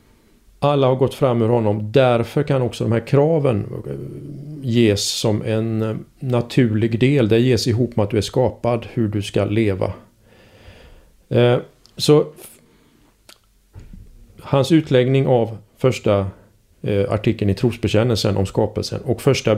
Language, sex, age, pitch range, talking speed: Swedish, male, 40-59, 105-135 Hz, 125 wpm